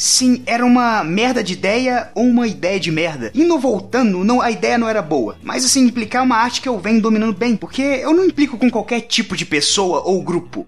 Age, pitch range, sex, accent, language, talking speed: 20-39, 205-265 Hz, male, Brazilian, Portuguese, 235 wpm